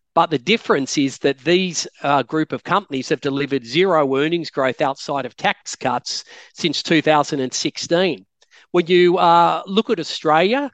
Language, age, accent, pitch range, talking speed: English, 40-59, Australian, 135-160 Hz, 150 wpm